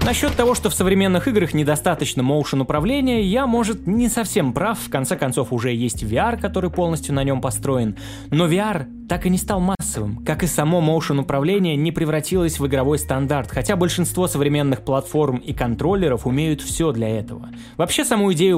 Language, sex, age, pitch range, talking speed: Russian, male, 20-39, 130-185 Hz, 175 wpm